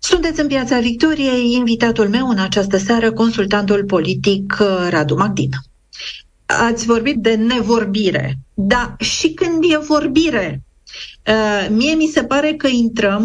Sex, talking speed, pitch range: female, 130 wpm, 195-260 Hz